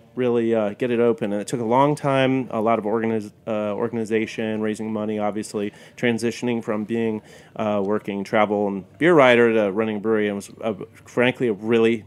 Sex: male